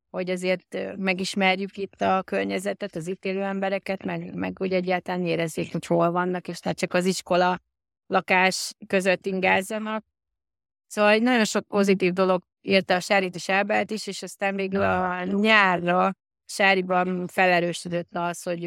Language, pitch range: Hungarian, 170-195 Hz